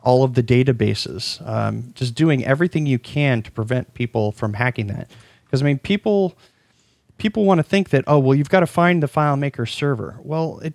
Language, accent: English, American